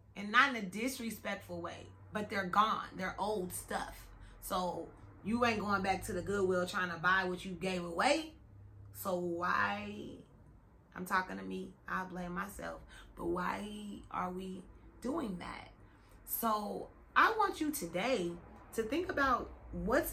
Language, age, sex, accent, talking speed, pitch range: English, 30-49, female, American, 150 wpm, 180-250 Hz